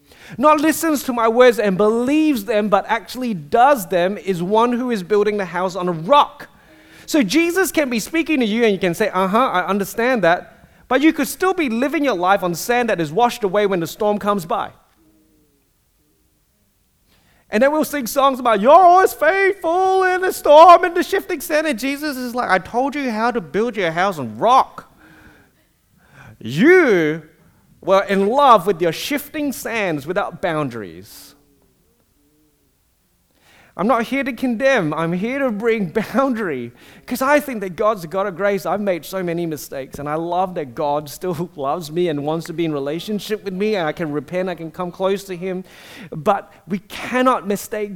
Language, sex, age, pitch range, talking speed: English, male, 30-49, 175-265 Hz, 190 wpm